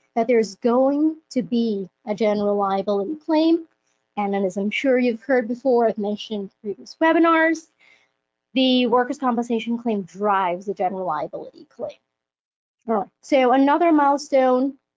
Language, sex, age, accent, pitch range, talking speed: English, female, 30-49, American, 205-260 Hz, 145 wpm